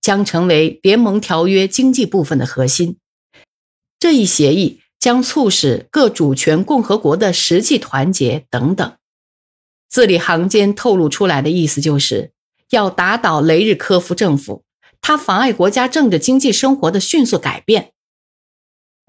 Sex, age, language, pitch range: female, 50-69, Chinese, 155-240 Hz